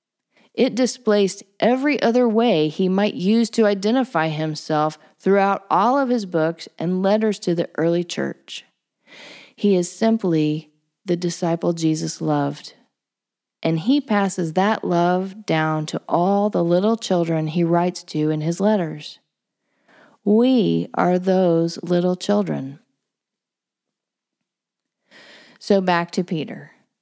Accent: American